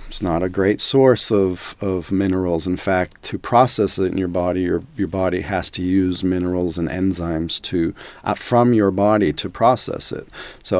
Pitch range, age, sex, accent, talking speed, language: 90-100 Hz, 40-59, male, American, 190 wpm, English